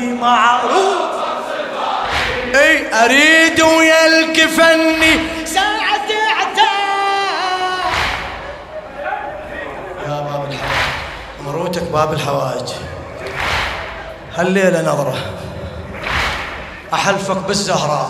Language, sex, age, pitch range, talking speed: Arabic, male, 20-39, 235-315 Hz, 55 wpm